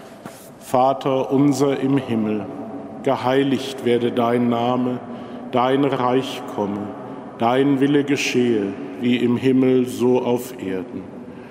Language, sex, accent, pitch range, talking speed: German, male, German, 120-140 Hz, 105 wpm